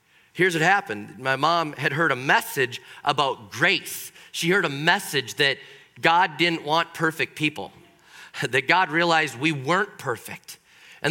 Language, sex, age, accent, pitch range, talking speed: English, male, 40-59, American, 160-200 Hz, 150 wpm